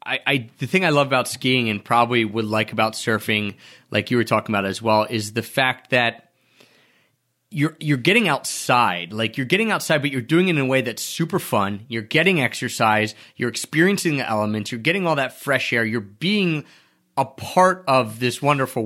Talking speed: 200 wpm